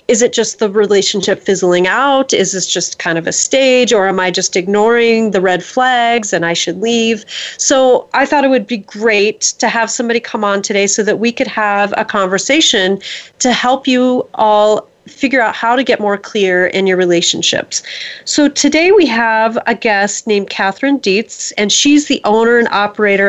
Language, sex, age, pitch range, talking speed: English, female, 30-49, 195-240 Hz, 195 wpm